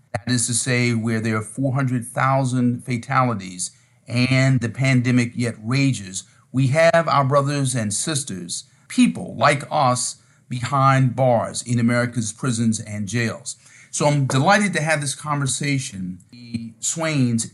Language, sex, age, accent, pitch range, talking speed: English, male, 40-59, American, 120-140 Hz, 135 wpm